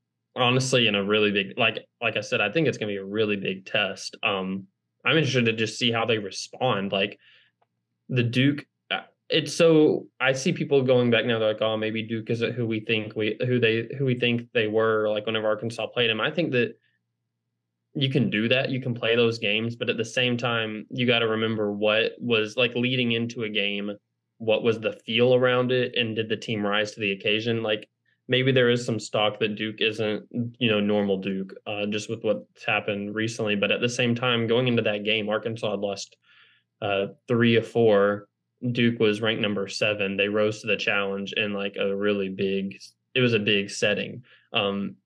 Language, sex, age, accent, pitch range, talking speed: English, male, 20-39, American, 105-120 Hz, 210 wpm